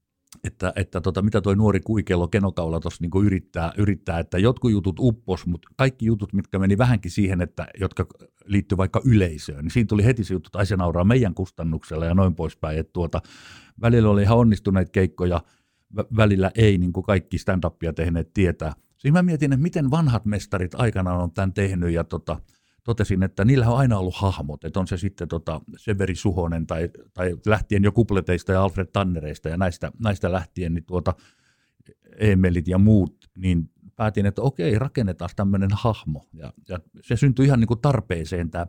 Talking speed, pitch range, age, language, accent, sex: 175 wpm, 85-105 Hz, 50-69, Finnish, native, male